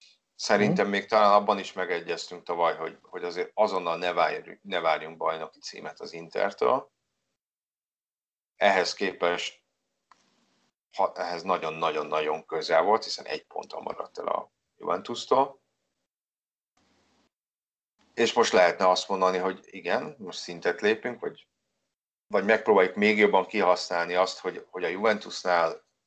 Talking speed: 125 wpm